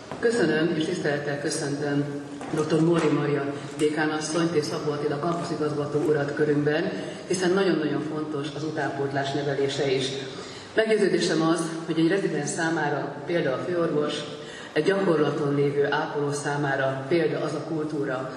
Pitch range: 145-160 Hz